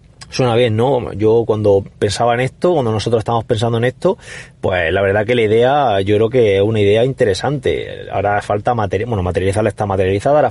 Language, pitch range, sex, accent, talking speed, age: Spanish, 105-130 Hz, male, Spanish, 195 wpm, 30-49